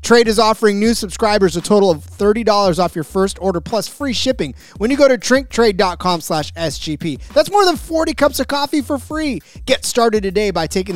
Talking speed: 205 wpm